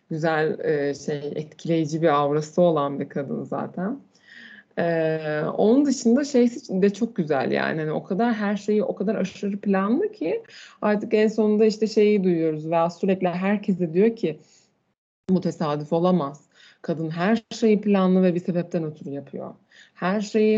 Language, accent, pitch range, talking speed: Turkish, native, 160-205 Hz, 155 wpm